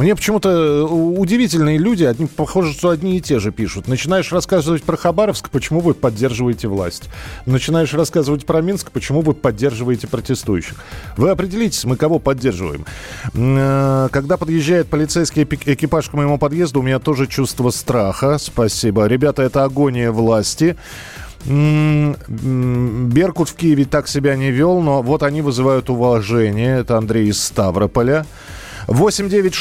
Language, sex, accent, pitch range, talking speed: Russian, male, native, 120-160 Hz, 140 wpm